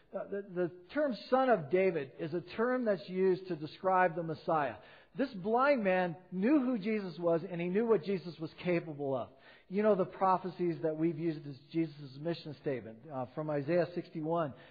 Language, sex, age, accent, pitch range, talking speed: English, male, 50-69, American, 175-230 Hz, 190 wpm